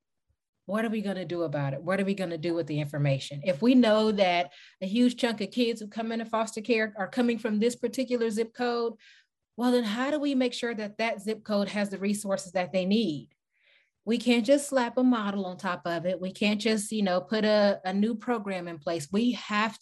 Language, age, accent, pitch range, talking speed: English, 30-49, American, 170-225 Hz, 240 wpm